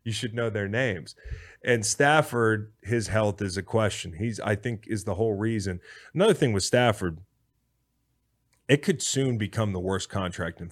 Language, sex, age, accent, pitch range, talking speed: English, male, 30-49, American, 95-125 Hz, 175 wpm